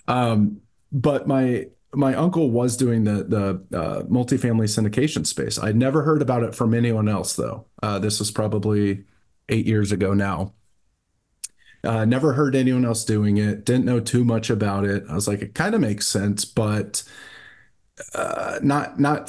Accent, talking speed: American, 170 wpm